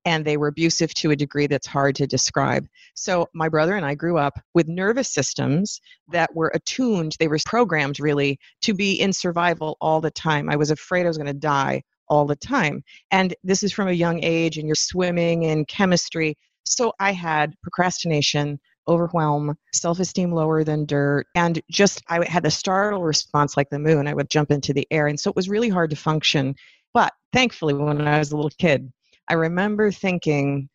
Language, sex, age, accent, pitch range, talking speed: English, female, 40-59, American, 145-190 Hz, 195 wpm